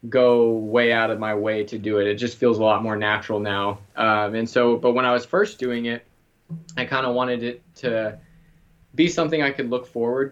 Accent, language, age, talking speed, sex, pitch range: American, English, 20-39, 225 wpm, male, 115-135 Hz